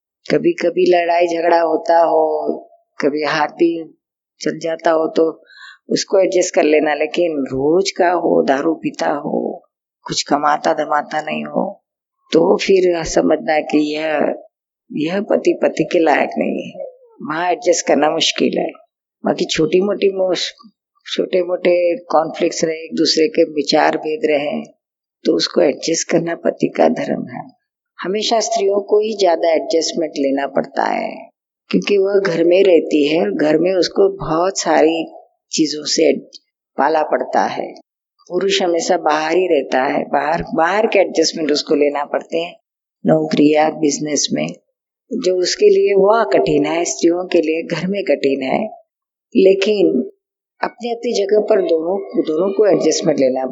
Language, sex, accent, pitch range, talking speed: Hindi, female, native, 155-200 Hz, 145 wpm